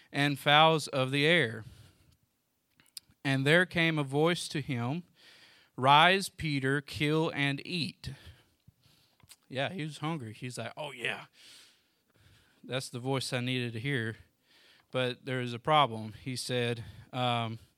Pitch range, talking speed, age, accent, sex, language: 125-155 Hz, 135 wpm, 40-59, American, male, English